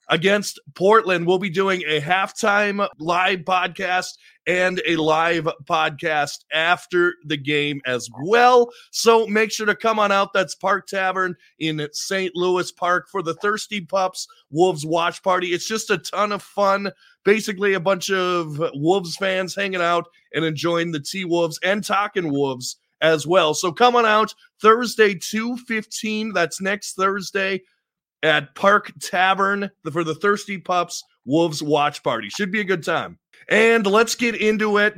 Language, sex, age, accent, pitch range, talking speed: English, male, 30-49, American, 165-205 Hz, 155 wpm